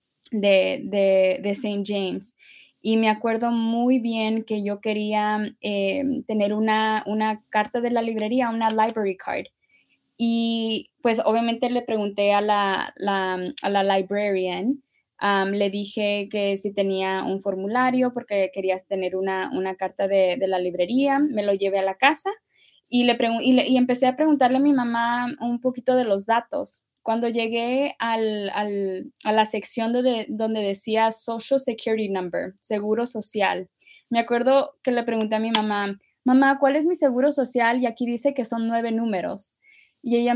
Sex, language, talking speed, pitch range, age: female, Spanish, 170 wpm, 205-250 Hz, 20-39